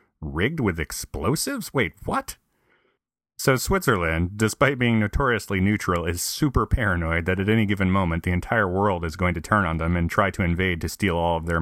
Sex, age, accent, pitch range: male, 30-49, American, 85-105 Hz